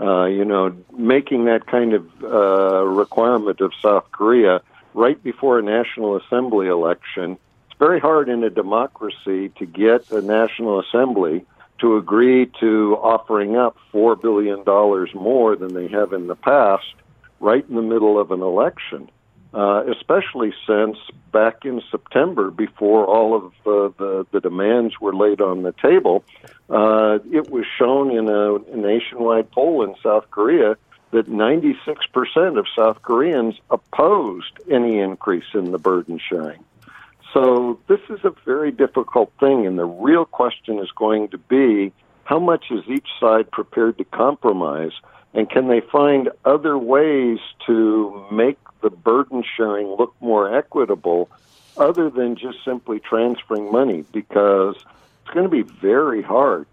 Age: 60-79